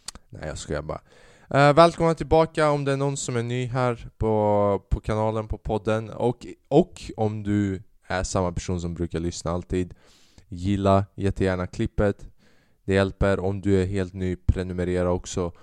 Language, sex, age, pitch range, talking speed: Swedish, male, 20-39, 85-105 Hz, 165 wpm